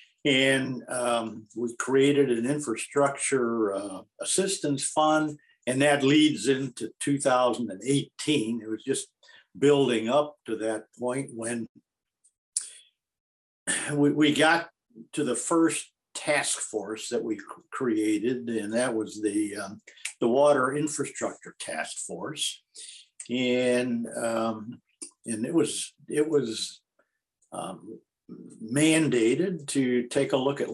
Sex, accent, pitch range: male, American, 120-150 Hz